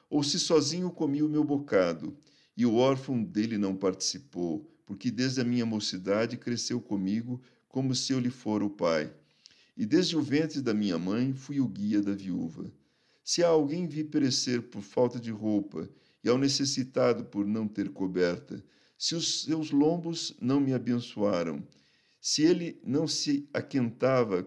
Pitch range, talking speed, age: 105-145 Hz, 160 wpm, 50-69